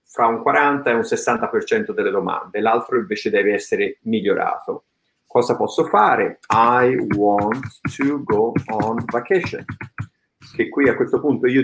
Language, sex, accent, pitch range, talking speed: Italian, male, native, 110-145 Hz, 150 wpm